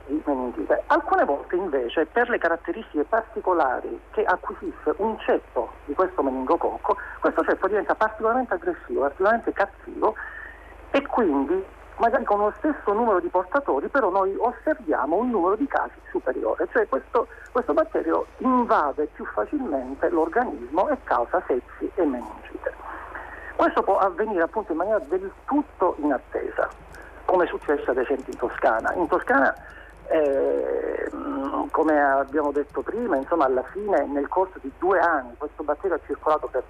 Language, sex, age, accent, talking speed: Italian, male, 50-69, native, 145 wpm